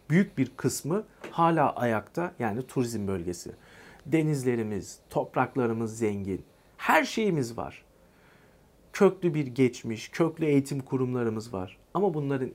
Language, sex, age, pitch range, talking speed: Turkish, male, 50-69, 115-165 Hz, 110 wpm